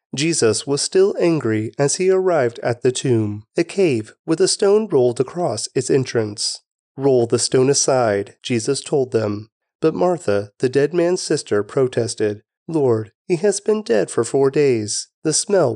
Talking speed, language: 165 wpm, English